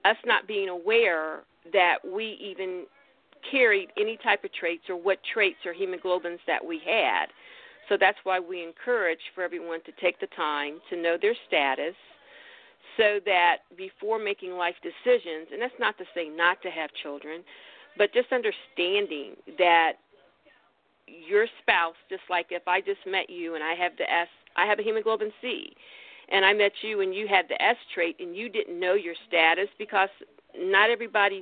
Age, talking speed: 50-69, 175 wpm